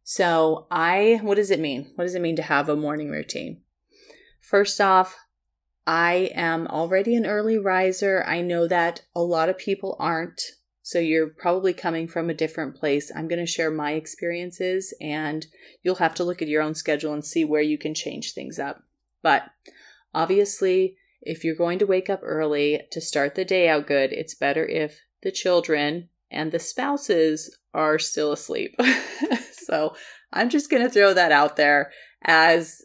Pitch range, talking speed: 155-190 Hz, 180 wpm